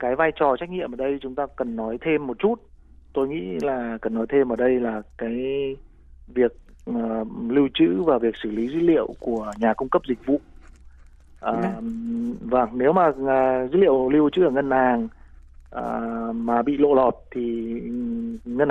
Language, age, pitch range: Vietnamese, 30-49, 115-145 Hz